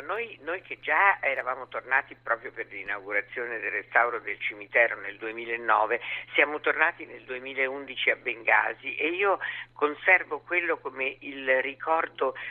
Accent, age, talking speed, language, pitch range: native, 50-69, 135 wpm, Italian, 135-180 Hz